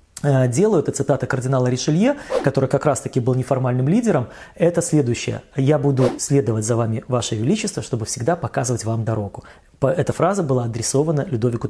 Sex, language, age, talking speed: male, Russian, 20-39, 160 wpm